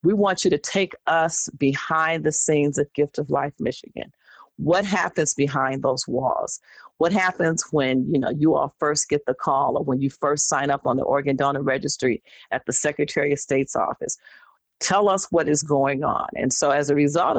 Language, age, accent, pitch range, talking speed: English, 40-59, American, 140-165 Hz, 200 wpm